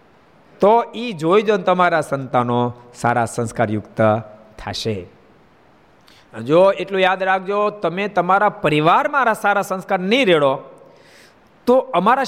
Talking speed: 110 wpm